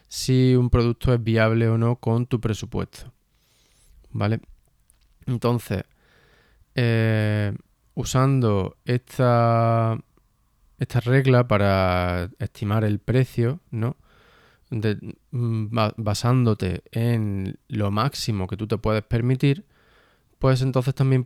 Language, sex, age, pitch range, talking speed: Spanish, male, 20-39, 105-125 Hz, 100 wpm